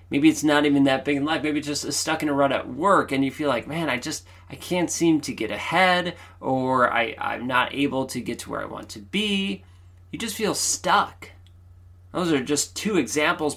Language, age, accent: English, 30-49, American